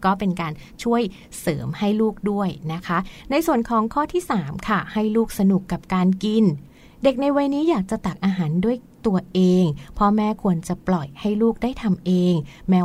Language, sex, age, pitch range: Thai, female, 20-39, 175-215 Hz